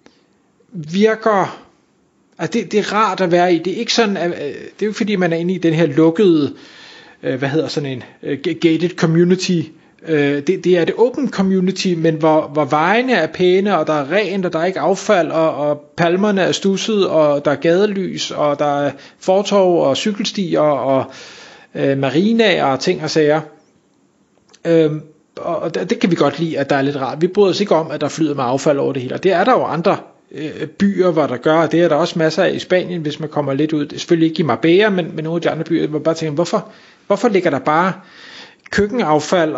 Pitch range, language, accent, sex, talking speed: 155-195 Hz, Danish, native, male, 220 wpm